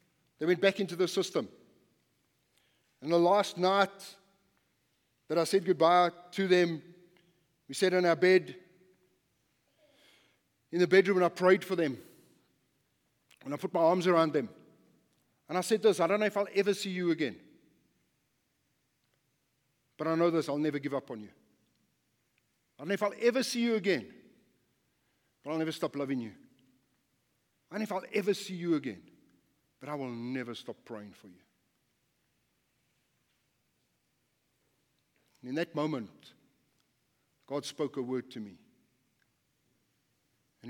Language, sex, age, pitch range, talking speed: English, male, 50-69, 125-180 Hz, 150 wpm